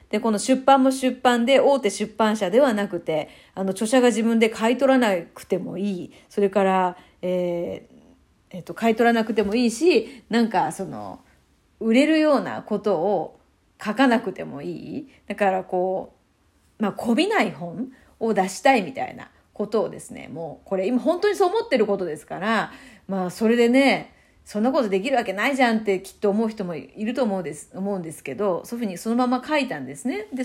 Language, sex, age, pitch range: Japanese, female, 40-59, 195-260 Hz